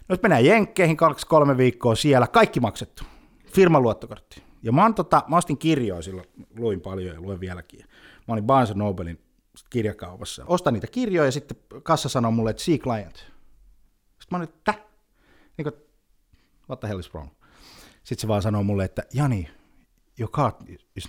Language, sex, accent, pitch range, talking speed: Finnish, male, native, 105-160 Hz, 170 wpm